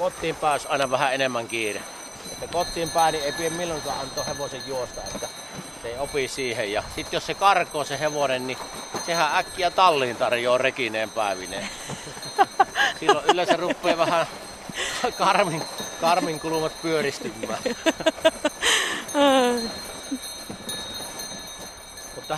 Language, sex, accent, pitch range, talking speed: Finnish, male, native, 155-210 Hz, 105 wpm